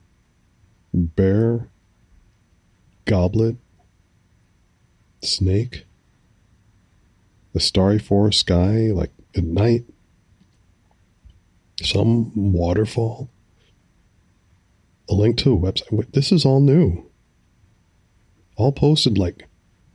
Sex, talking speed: male, 70 wpm